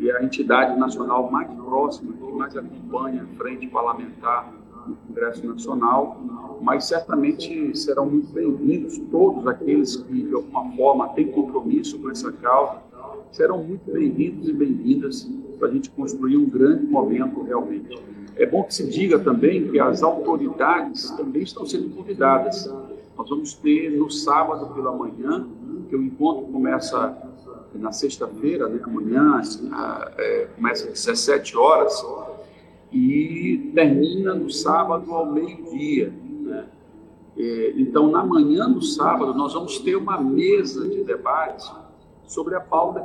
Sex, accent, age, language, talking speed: male, Brazilian, 50-69, Portuguese, 140 wpm